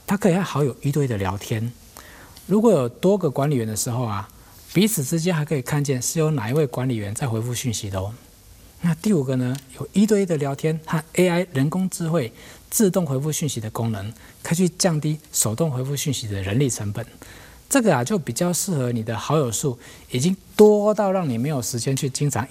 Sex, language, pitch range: male, Chinese, 115-170 Hz